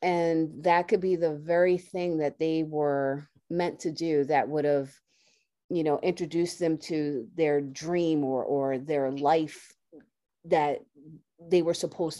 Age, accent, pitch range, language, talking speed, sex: 30-49, American, 145-180 Hz, English, 150 wpm, female